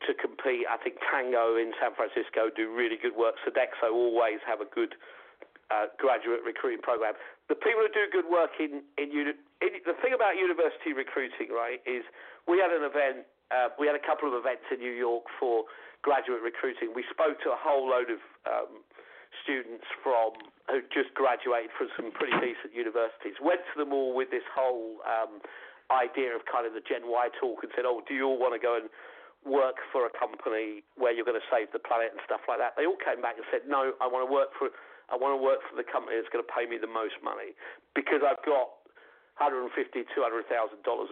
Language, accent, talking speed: English, British, 215 wpm